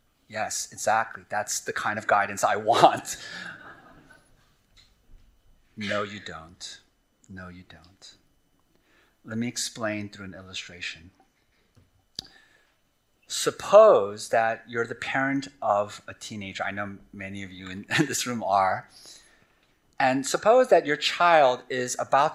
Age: 30-49